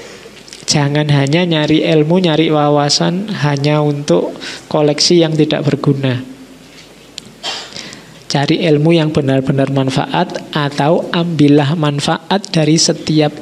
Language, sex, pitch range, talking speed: Indonesian, male, 145-165 Hz, 100 wpm